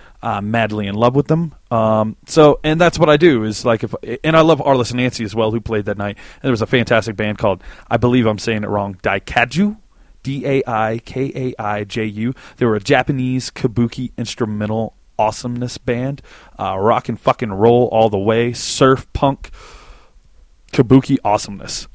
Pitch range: 105-130 Hz